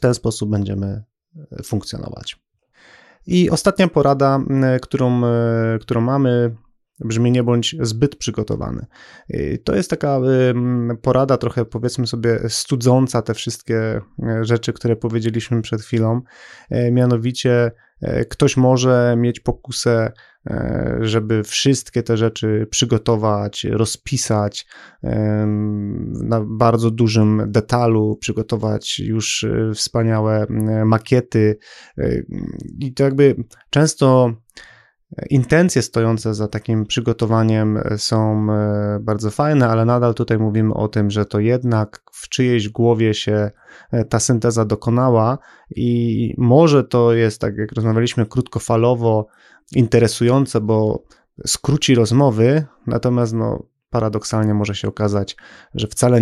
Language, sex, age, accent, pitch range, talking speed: Polish, male, 20-39, native, 110-125 Hz, 105 wpm